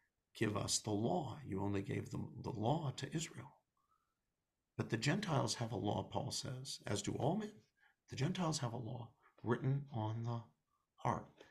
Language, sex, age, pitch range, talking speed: English, male, 50-69, 100-130 Hz, 170 wpm